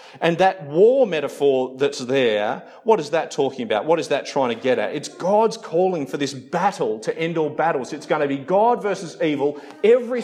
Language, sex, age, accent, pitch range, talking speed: English, male, 40-59, Australian, 140-210 Hz, 210 wpm